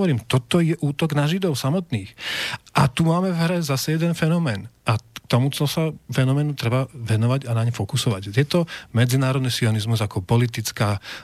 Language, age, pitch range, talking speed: Slovak, 40-59, 120-150 Hz, 170 wpm